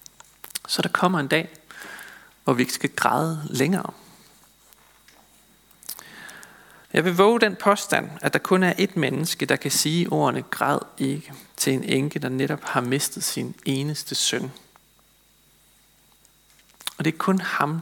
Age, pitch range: 40-59, 135-190 Hz